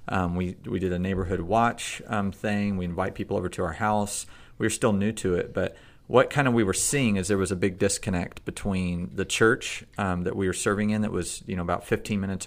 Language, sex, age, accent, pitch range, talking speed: English, male, 30-49, American, 90-105 Hz, 245 wpm